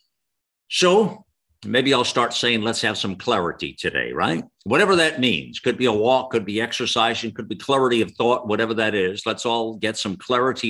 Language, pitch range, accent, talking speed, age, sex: English, 95-125 Hz, American, 190 wpm, 60-79, male